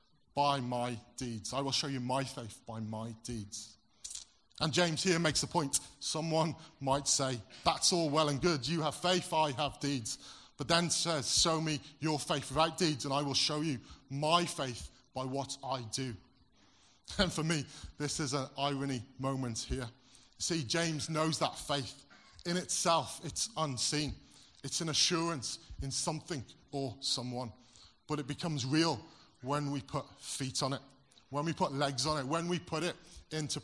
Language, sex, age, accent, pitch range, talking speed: English, male, 30-49, British, 125-155 Hz, 175 wpm